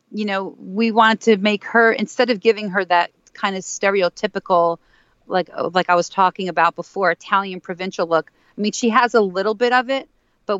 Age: 40-59